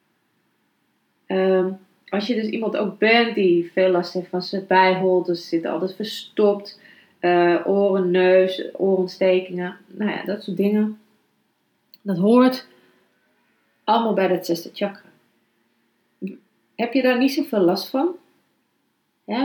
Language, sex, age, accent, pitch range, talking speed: Dutch, female, 30-49, Dutch, 180-230 Hz, 125 wpm